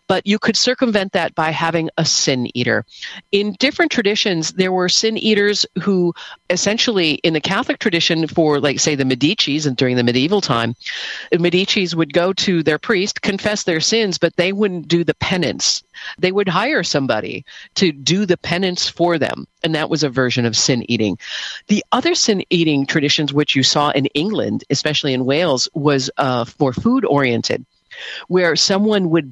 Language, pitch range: English, 135-185 Hz